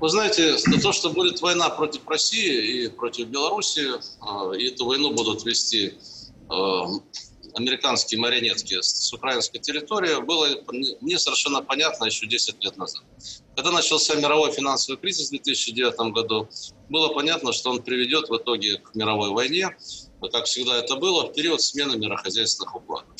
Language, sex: Russian, male